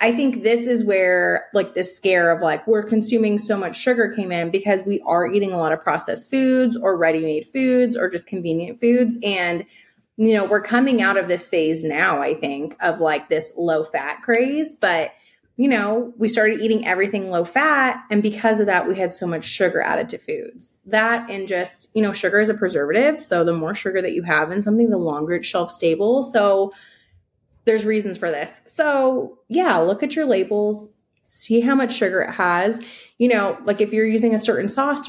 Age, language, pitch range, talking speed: 20-39, English, 185-245 Hz, 205 wpm